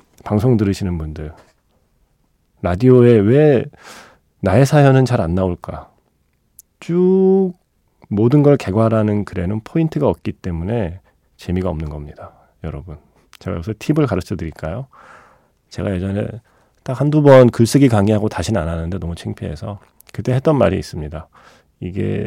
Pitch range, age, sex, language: 90-125 Hz, 40-59, male, Korean